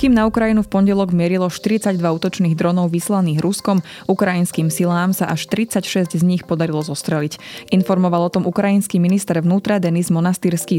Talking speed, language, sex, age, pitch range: 155 wpm, Slovak, female, 20-39, 170-200 Hz